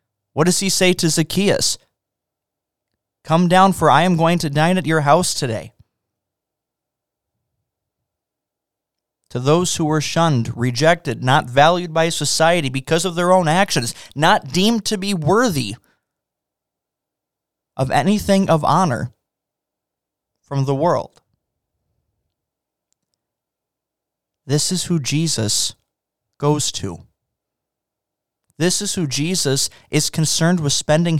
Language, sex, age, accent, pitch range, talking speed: English, male, 30-49, American, 120-165 Hz, 115 wpm